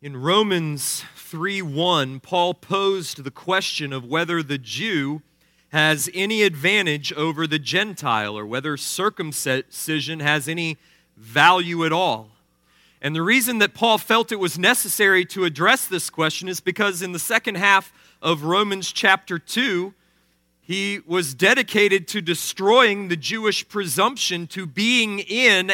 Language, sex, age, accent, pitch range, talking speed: English, male, 40-59, American, 160-200 Hz, 140 wpm